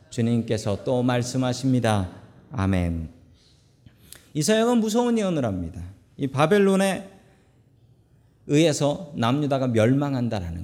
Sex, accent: male, native